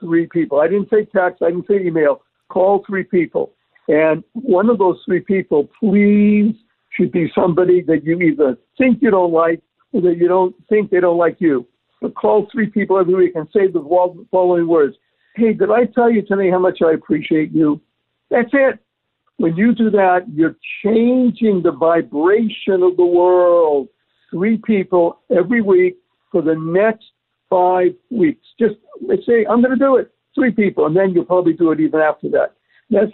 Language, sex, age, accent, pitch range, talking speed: English, male, 60-79, American, 170-215 Hz, 190 wpm